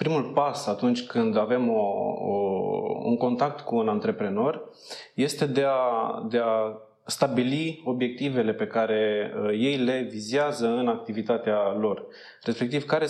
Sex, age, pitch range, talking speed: male, 20-39, 120-155 Hz, 120 wpm